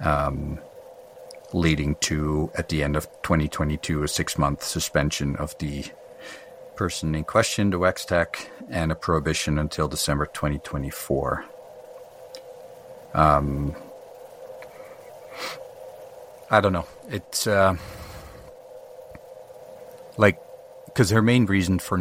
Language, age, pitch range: English, 50-69, 75-115 Hz